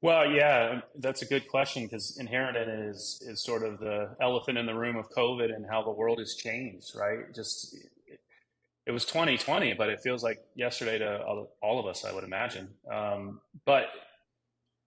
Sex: male